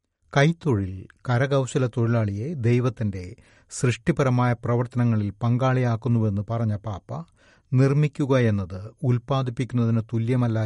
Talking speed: 70 wpm